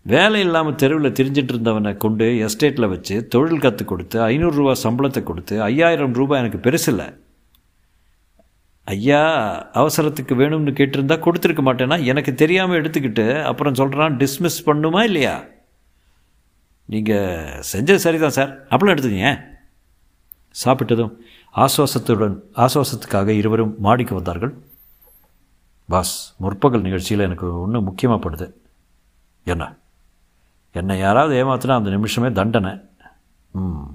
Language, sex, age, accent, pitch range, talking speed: Tamil, male, 50-69, native, 95-135 Hz, 100 wpm